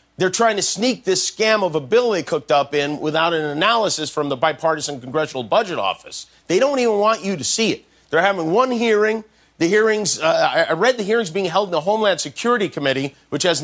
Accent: American